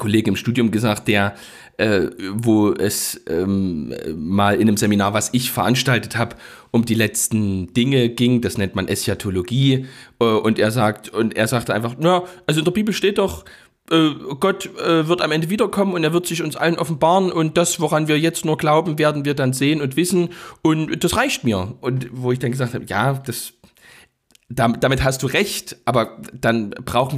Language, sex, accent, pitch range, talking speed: German, male, German, 120-155 Hz, 190 wpm